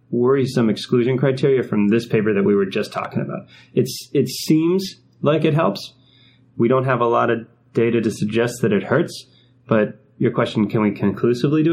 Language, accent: English, American